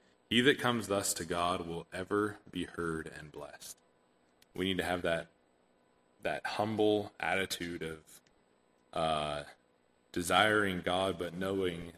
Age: 20-39